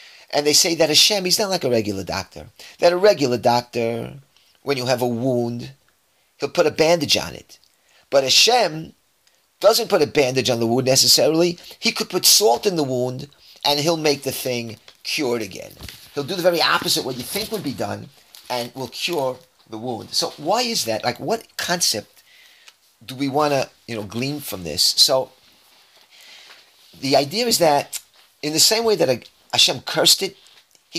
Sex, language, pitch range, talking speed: male, English, 115-160 Hz, 190 wpm